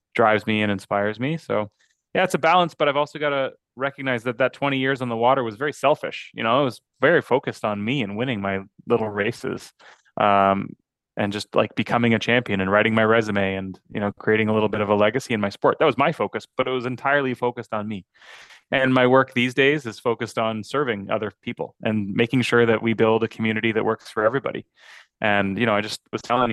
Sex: male